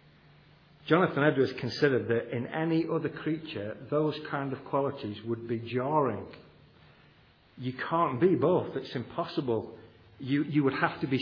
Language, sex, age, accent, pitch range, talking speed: English, male, 50-69, British, 120-155 Hz, 145 wpm